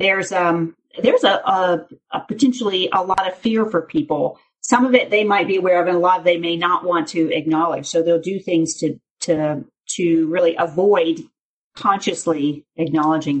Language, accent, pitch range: English, American, 170-220 Hz